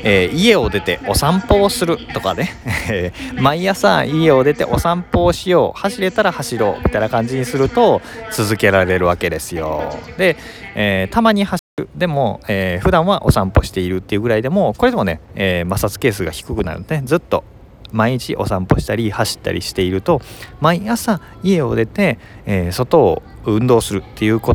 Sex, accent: male, native